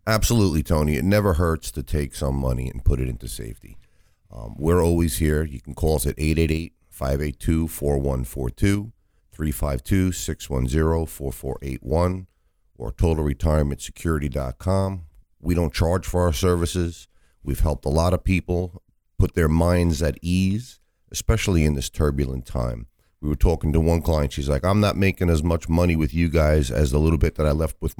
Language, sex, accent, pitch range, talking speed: English, male, American, 75-90 Hz, 160 wpm